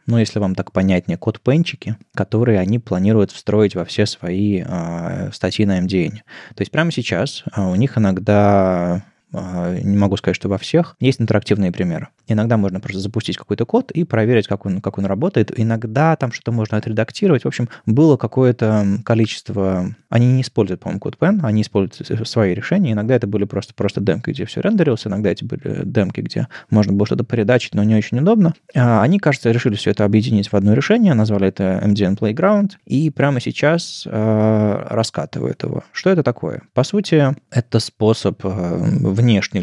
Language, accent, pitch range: Russian, native, 100-130 Hz